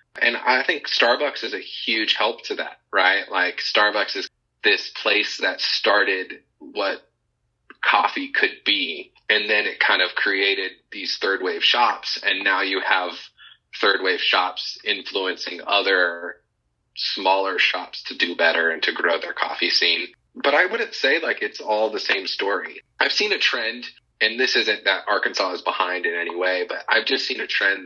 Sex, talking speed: male, 170 wpm